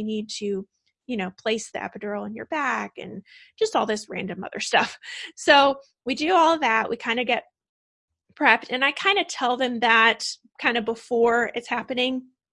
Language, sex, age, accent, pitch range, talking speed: English, female, 20-39, American, 220-275 Hz, 185 wpm